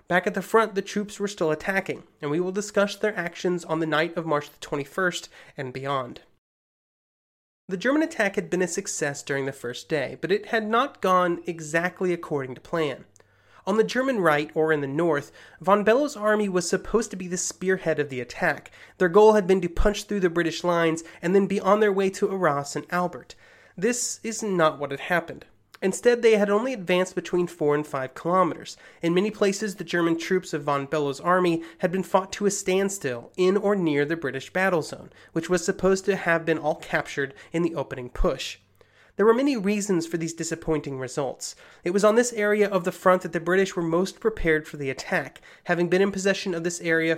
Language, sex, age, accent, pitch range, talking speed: English, male, 30-49, American, 160-200 Hz, 210 wpm